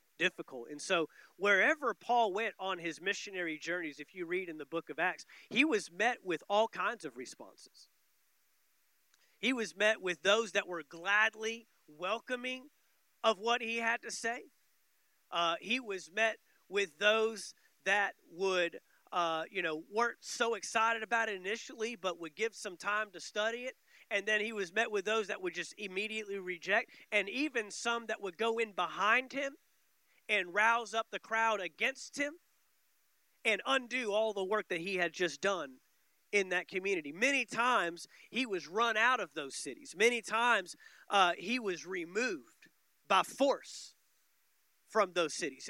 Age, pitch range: 40-59, 185-230 Hz